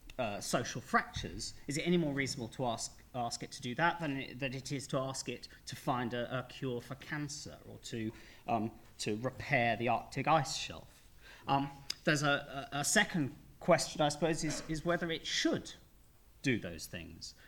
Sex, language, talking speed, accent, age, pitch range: male, English, 190 wpm, British, 40-59, 110-145 Hz